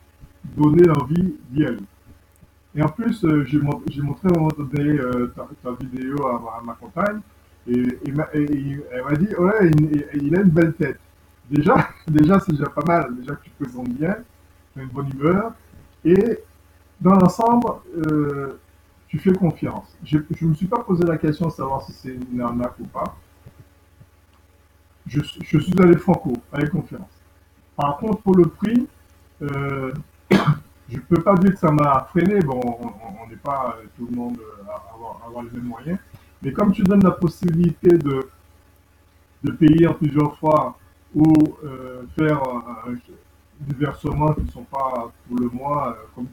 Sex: male